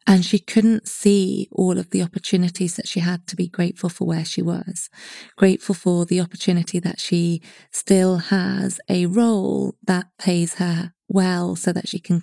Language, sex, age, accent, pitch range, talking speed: English, female, 20-39, British, 175-200 Hz, 175 wpm